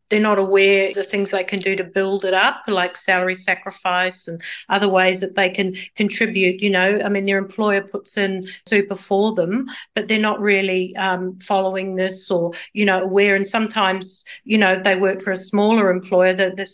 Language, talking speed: English, 205 wpm